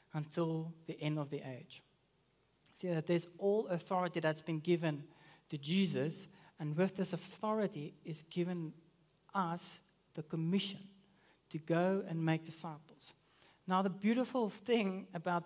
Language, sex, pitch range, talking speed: English, male, 145-175 Hz, 135 wpm